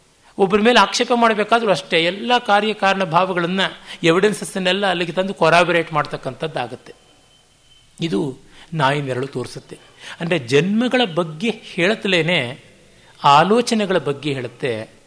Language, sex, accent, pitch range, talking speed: Kannada, male, native, 145-190 Hz, 90 wpm